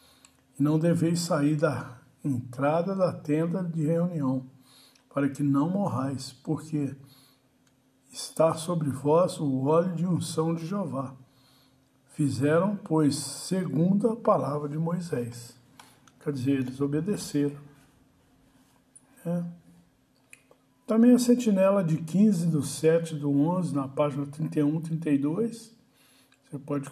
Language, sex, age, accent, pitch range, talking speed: Portuguese, male, 60-79, Brazilian, 135-165 Hz, 110 wpm